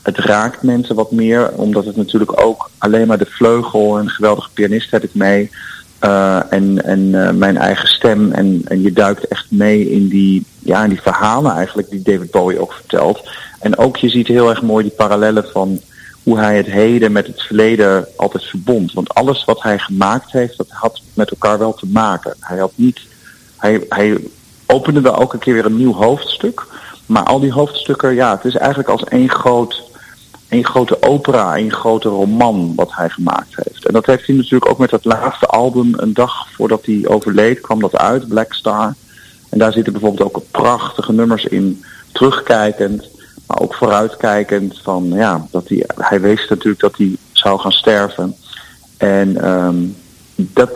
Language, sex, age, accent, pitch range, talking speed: Dutch, male, 40-59, Dutch, 100-120 Hz, 185 wpm